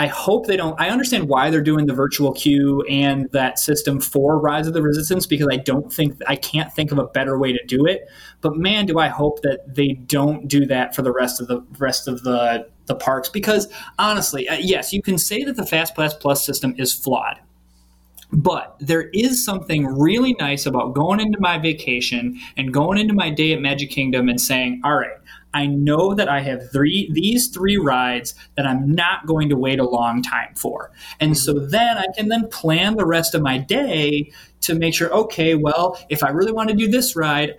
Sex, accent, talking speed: male, American, 215 wpm